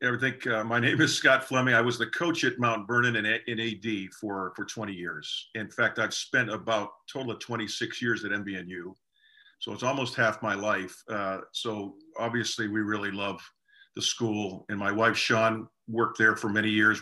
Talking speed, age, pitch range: 200 wpm, 50-69, 105-120 Hz